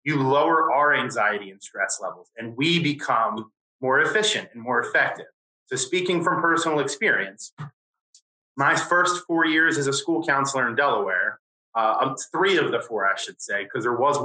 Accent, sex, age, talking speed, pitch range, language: American, male, 30-49, 175 wpm, 130-165 Hz, English